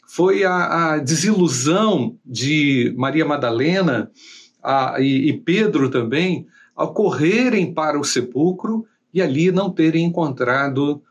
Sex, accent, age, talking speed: male, Brazilian, 50-69, 115 wpm